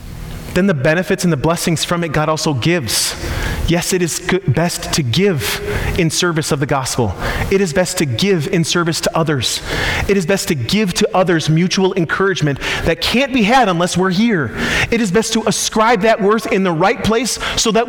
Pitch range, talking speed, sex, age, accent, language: 130-185 Hz, 205 wpm, male, 30-49, American, English